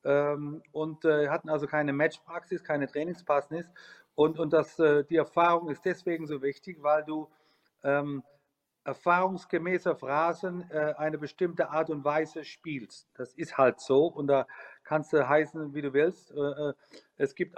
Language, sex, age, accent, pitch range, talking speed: German, male, 40-59, German, 145-165 Hz, 155 wpm